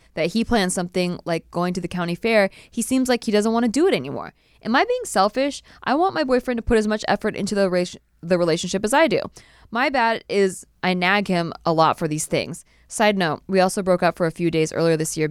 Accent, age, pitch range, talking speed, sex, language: American, 20-39, 160-200 Hz, 255 wpm, female, English